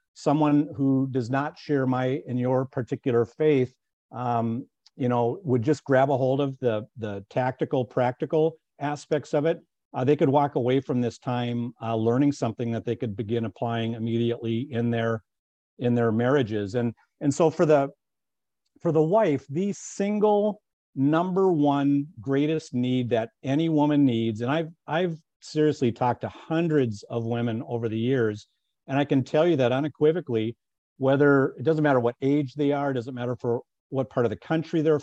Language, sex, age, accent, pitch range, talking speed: English, male, 50-69, American, 115-145 Hz, 180 wpm